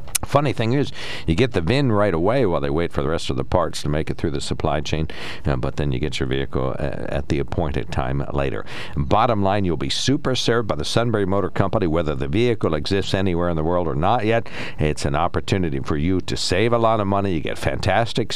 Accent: American